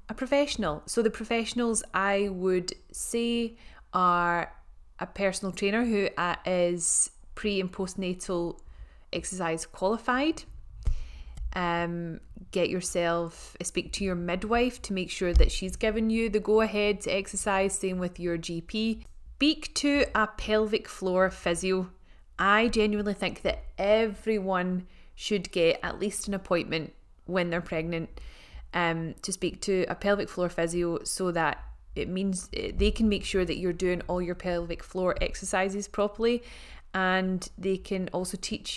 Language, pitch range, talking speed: English, 175-205 Hz, 140 wpm